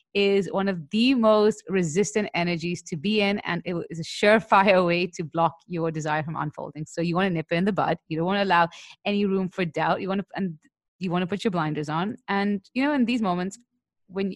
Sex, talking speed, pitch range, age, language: female, 240 wpm, 165-195 Hz, 30-49, English